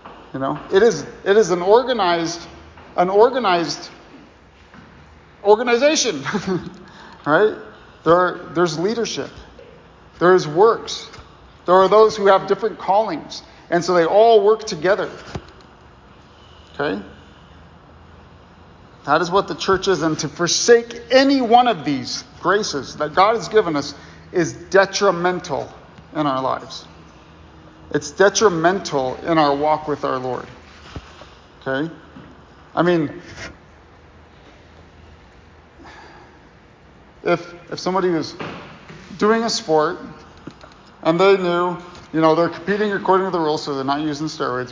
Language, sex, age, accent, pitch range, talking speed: English, male, 50-69, American, 145-195 Hz, 120 wpm